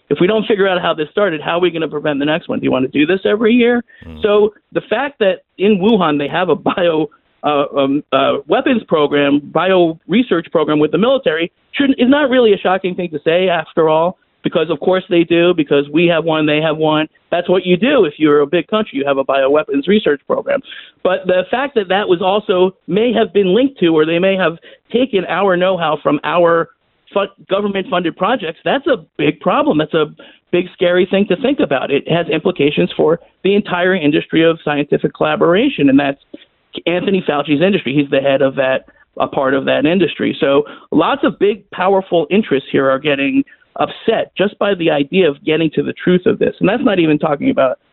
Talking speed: 220 wpm